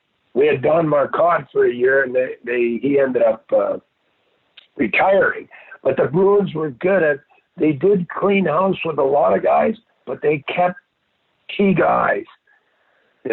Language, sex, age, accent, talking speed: English, male, 60-79, American, 165 wpm